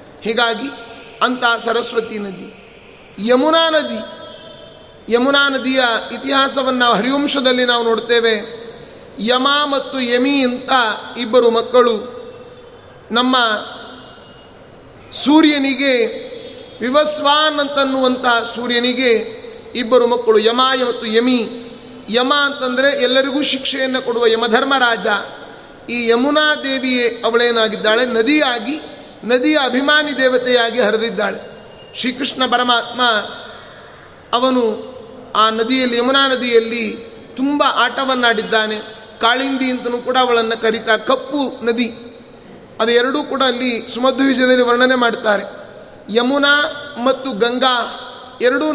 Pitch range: 235-275 Hz